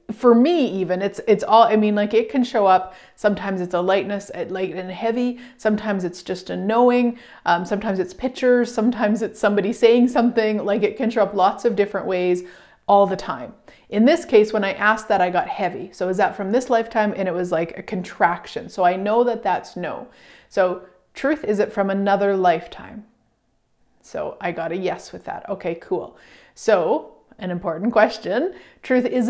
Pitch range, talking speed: 190-235 Hz, 195 wpm